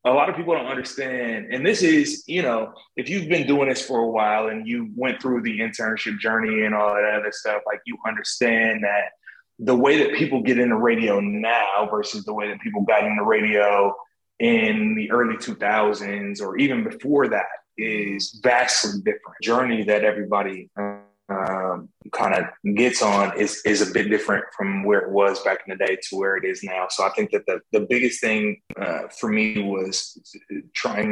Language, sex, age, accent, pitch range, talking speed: English, male, 20-39, American, 105-125 Hz, 200 wpm